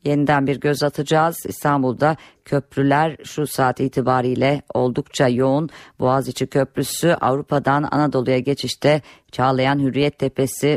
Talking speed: 105 wpm